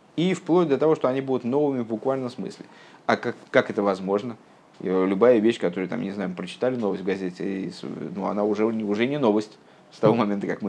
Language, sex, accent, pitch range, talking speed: Russian, male, native, 105-145 Hz, 230 wpm